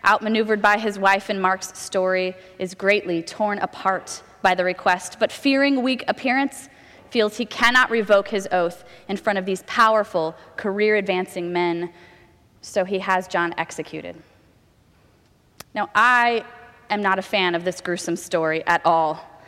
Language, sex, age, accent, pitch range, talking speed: English, female, 20-39, American, 185-235 Hz, 150 wpm